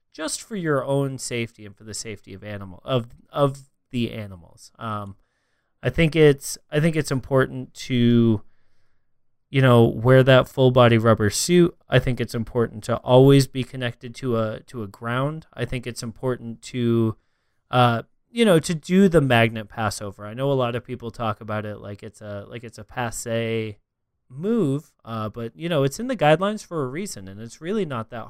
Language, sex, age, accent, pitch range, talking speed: English, male, 20-39, American, 115-140 Hz, 195 wpm